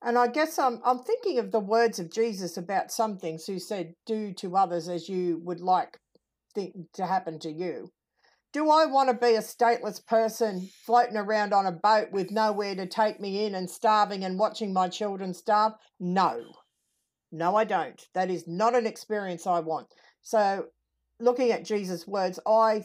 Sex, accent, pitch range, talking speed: female, Australian, 170-215 Hz, 185 wpm